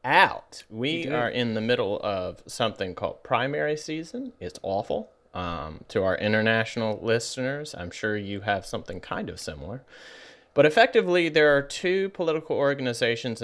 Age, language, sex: 30-49, English, male